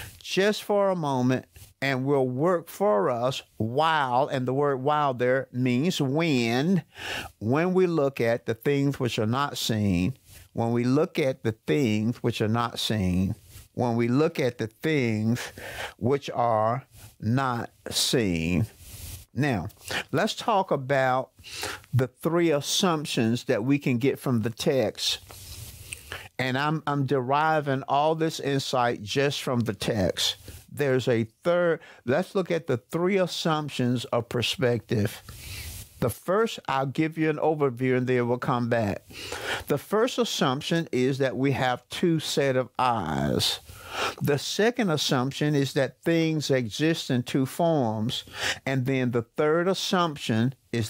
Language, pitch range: English, 115-150 Hz